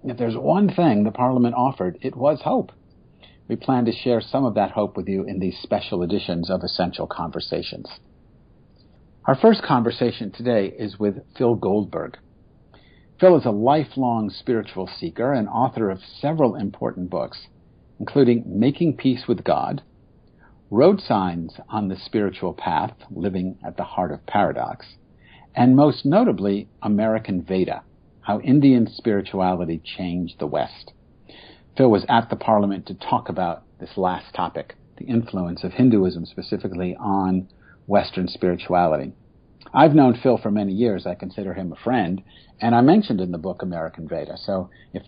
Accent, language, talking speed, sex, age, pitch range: American, English, 155 wpm, male, 50-69, 95-125 Hz